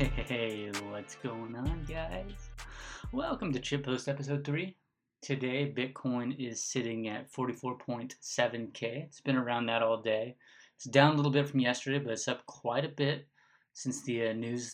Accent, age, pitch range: American, 20-39, 115-140 Hz